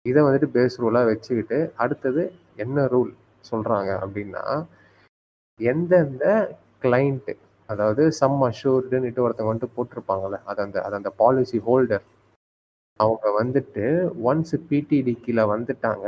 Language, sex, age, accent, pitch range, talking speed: Tamil, male, 30-49, native, 110-140 Hz, 110 wpm